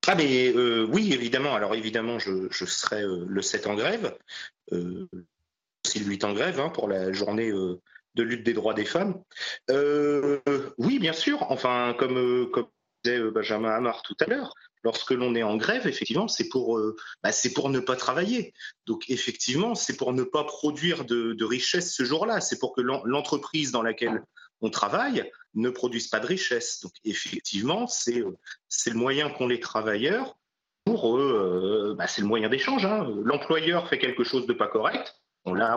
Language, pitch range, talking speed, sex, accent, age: French, 110-145 Hz, 185 wpm, male, French, 30-49